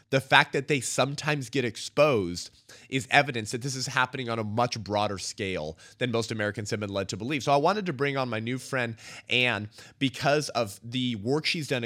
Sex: male